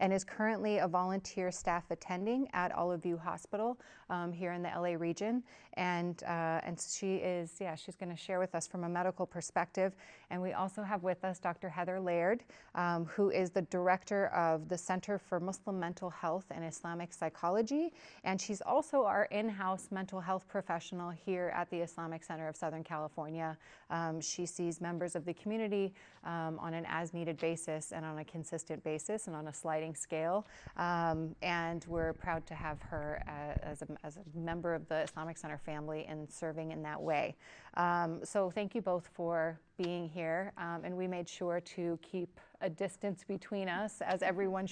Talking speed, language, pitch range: 185 wpm, English, 165-195 Hz